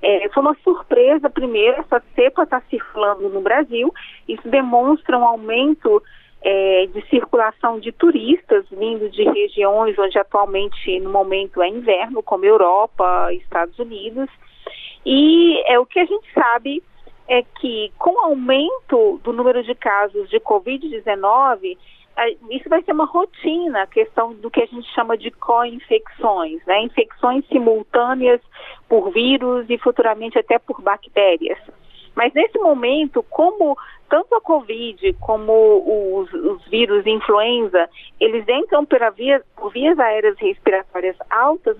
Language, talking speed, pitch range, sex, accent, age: Portuguese, 135 wpm, 225-330 Hz, female, Brazilian, 40-59